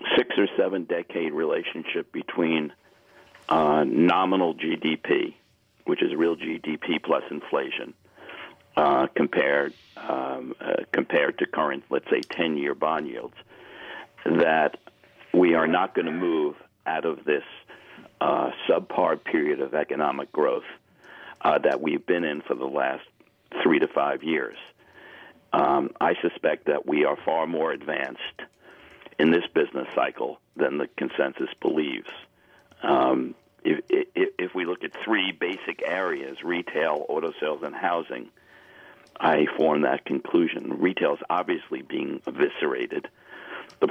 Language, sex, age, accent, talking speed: English, male, 60-79, American, 130 wpm